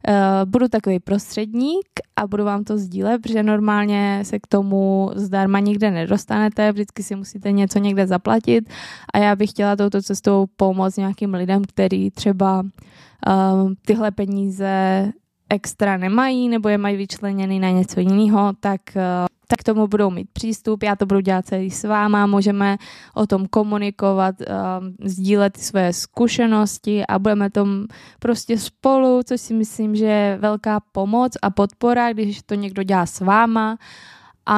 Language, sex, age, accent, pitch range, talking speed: Czech, female, 20-39, native, 195-220 Hz, 155 wpm